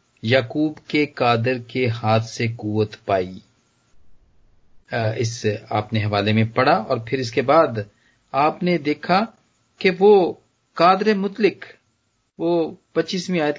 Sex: male